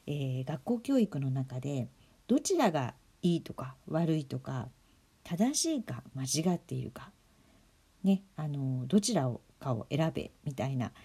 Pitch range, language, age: 135-205 Hz, Japanese, 50-69